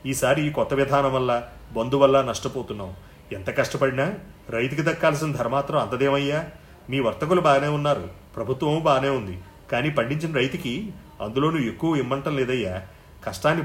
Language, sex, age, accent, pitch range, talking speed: Telugu, male, 40-59, native, 115-145 Hz, 125 wpm